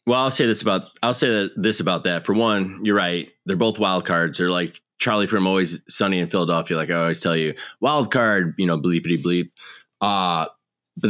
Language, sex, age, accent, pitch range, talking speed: English, male, 20-39, American, 85-110 Hz, 210 wpm